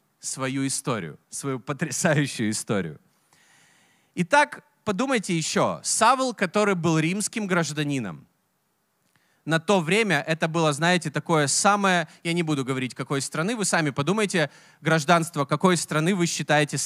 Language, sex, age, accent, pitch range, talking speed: Russian, male, 20-39, native, 160-210 Hz, 125 wpm